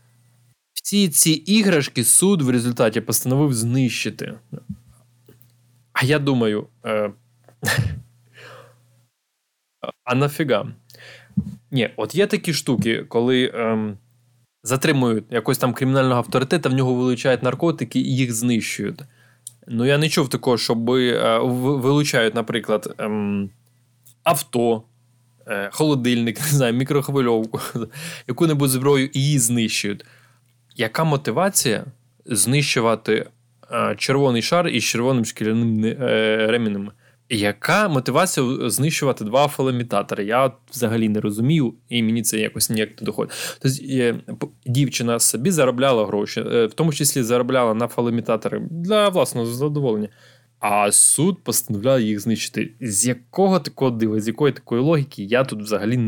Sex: male